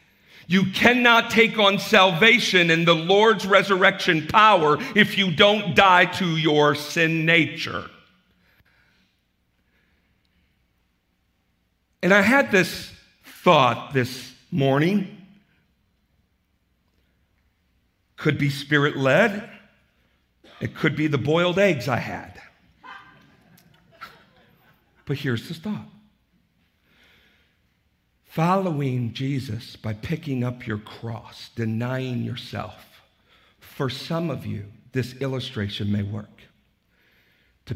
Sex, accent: male, American